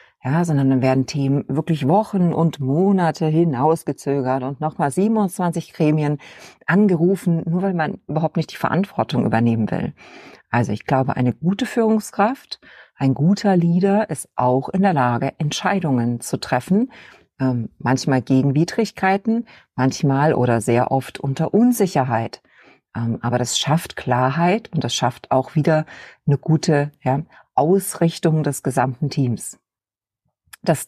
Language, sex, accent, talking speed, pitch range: German, female, German, 130 wpm, 130-170 Hz